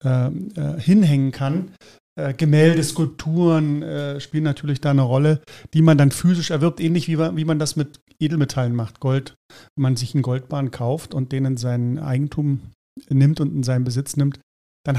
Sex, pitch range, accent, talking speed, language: male, 135-155 Hz, German, 160 wpm, German